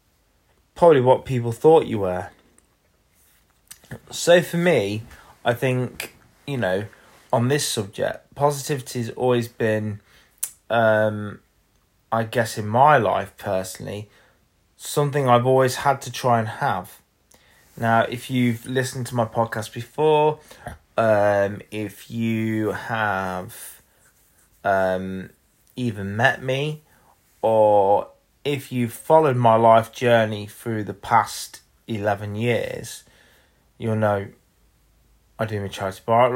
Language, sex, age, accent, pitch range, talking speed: English, male, 20-39, British, 105-125 Hz, 115 wpm